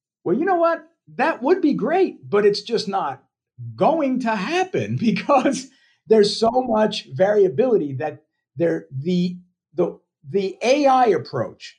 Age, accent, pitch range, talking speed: 50-69, American, 150-220 Hz, 135 wpm